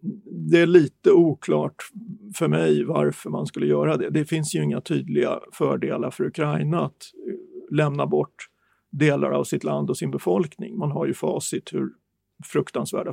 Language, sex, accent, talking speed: Swedish, male, native, 160 wpm